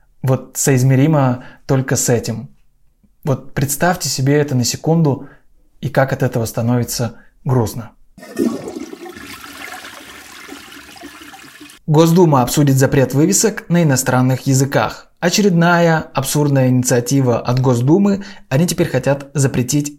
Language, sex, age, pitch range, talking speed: Russian, male, 20-39, 130-170 Hz, 100 wpm